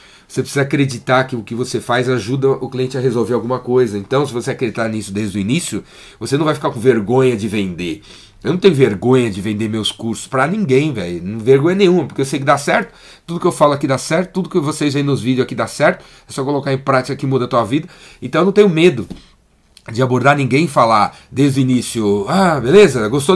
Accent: Brazilian